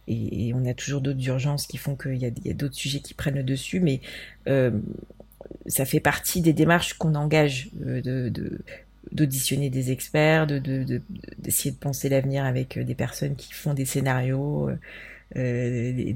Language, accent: French, French